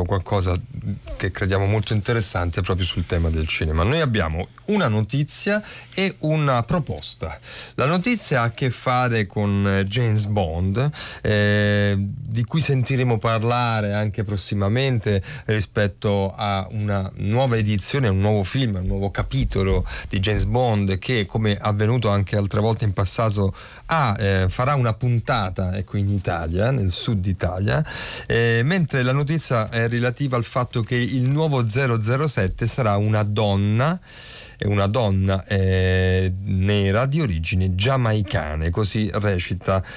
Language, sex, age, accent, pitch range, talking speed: Italian, male, 30-49, native, 100-125 Hz, 140 wpm